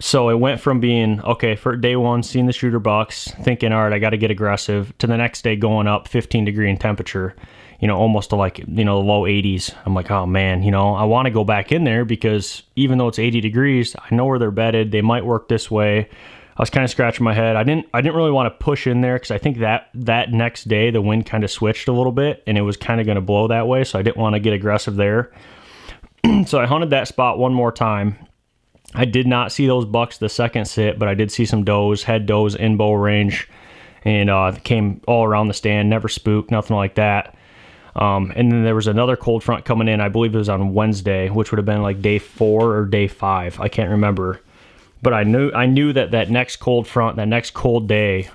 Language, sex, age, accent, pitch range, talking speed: English, male, 30-49, American, 105-120 Hz, 240 wpm